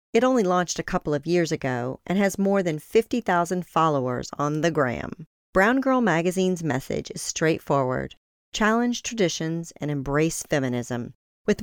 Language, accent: English, American